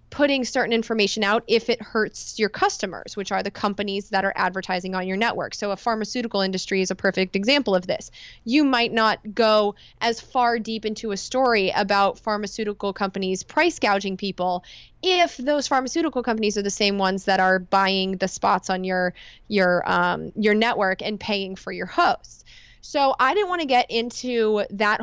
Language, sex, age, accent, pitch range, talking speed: English, female, 20-39, American, 205-250 Hz, 185 wpm